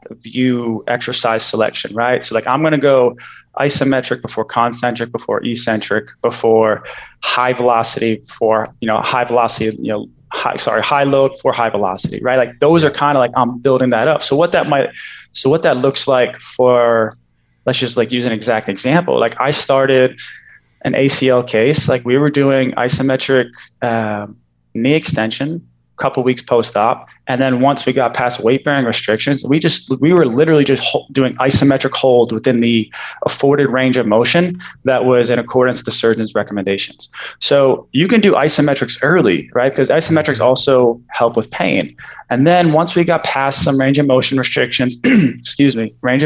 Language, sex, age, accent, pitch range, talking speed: English, male, 20-39, American, 115-140 Hz, 175 wpm